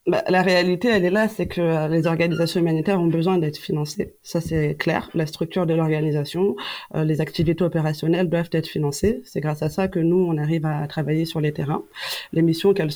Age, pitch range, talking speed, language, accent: 30-49, 150-175 Hz, 210 wpm, French, French